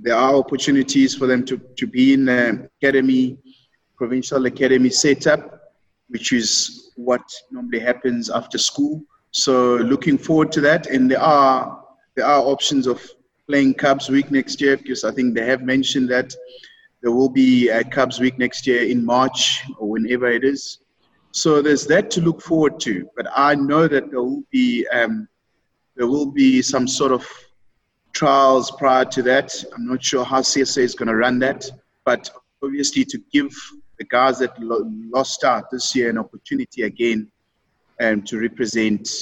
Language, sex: English, male